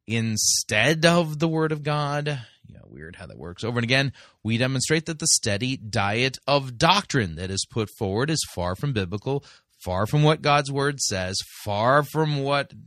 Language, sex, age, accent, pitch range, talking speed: English, male, 30-49, American, 105-135 Hz, 185 wpm